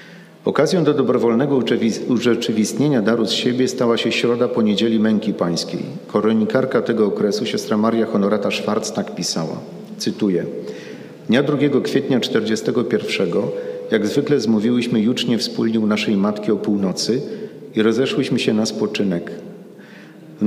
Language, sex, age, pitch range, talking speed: Polish, male, 40-59, 105-125 Hz, 125 wpm